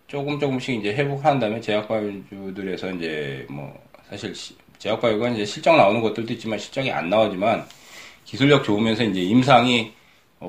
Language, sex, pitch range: Korean, male, 95-130 Hz